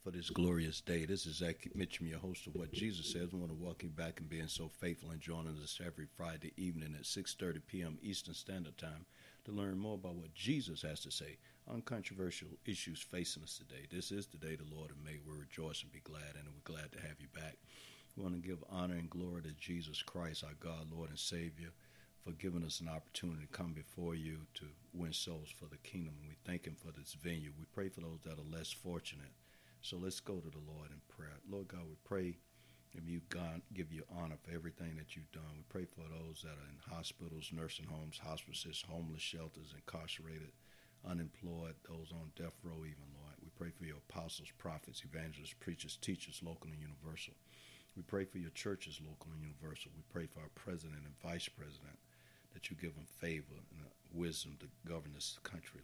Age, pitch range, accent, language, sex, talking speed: 60-79, 75-85 Hz, American, English, male, 215 wpm